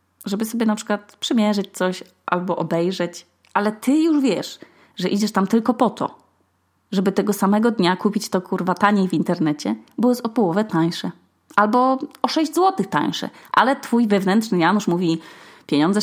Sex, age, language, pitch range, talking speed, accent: female, 20-39, Polish, 180-235 Hz, 165 wpm, native